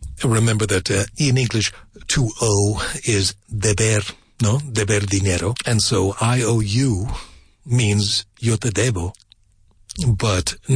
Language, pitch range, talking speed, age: English, 100-125 Hz, 125 wpm, 60-79